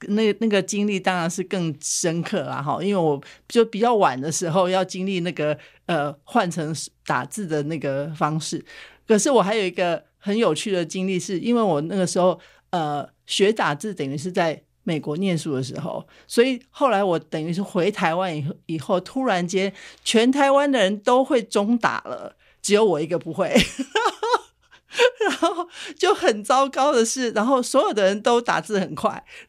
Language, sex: Chinese, male